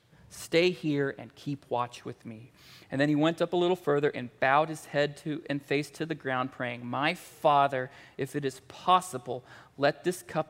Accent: American